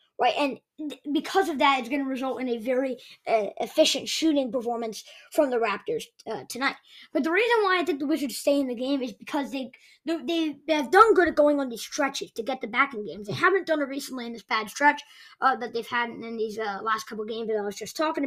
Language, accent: English, American